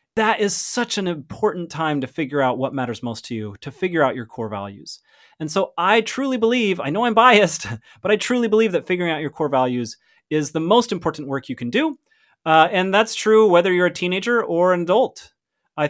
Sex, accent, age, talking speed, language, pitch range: male, American, 30-49, 225 wpm, English, 145-215 Hz